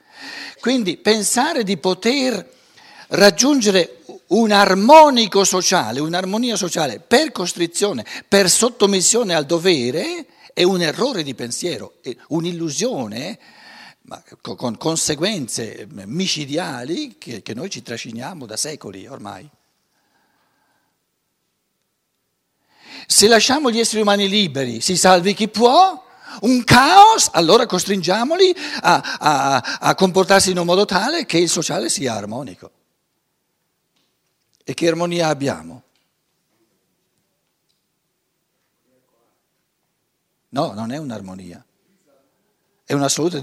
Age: 60-79